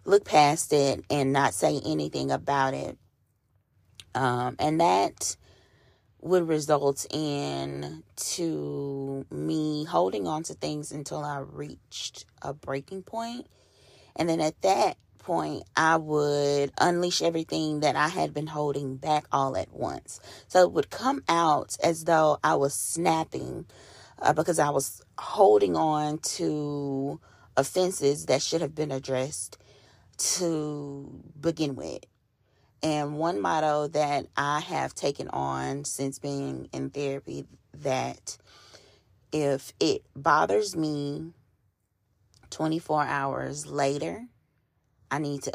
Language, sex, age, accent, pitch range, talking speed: English, female, 30-49, American, 110-155 Hz, 125 wpm